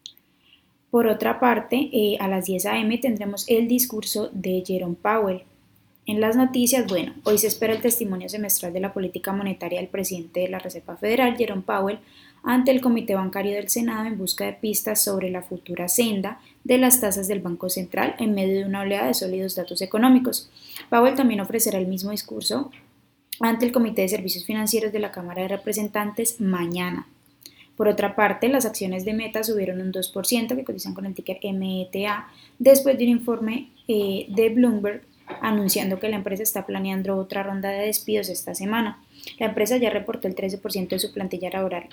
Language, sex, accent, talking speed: Spanish, female, Colombian, 180 wpm